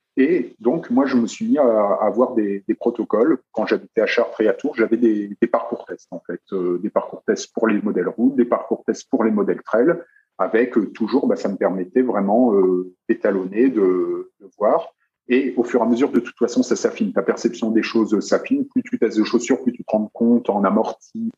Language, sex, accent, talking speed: French, male, French, 225 wpm